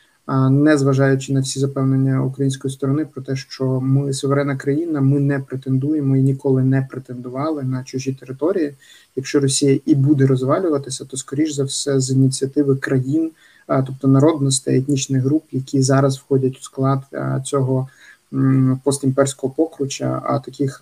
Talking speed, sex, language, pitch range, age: 140 wpm, male, Ukrainian, 130-145 Hz, 20-39